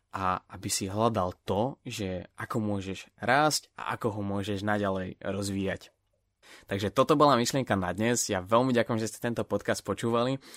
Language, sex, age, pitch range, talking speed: Slovak, male, 20-39, 100-120 Hz, 165 wpm